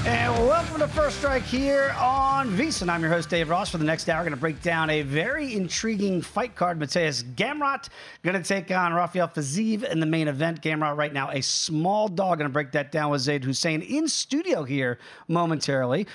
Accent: American